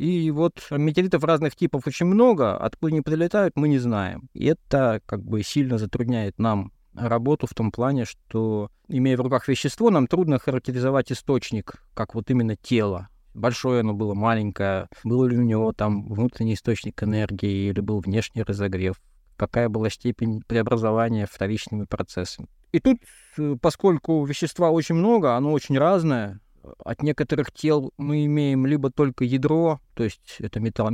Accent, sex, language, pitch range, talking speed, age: native, male, Russian, 105-140 Hz, 155 wpm, 20-39